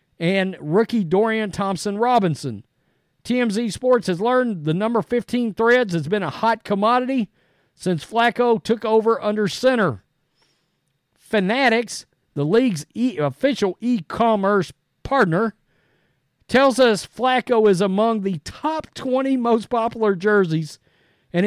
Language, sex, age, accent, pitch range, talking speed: English, male, 50-69, American, 170-235 Hz, 115 wpm